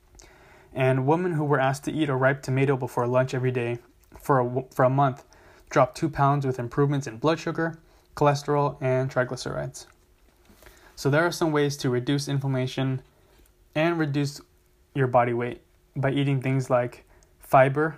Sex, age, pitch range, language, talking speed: male, 20-39, 130-150 Hz, English, 155 wpm